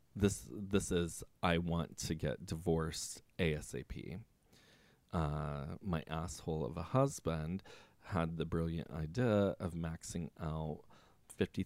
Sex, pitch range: male, 80-95 Hz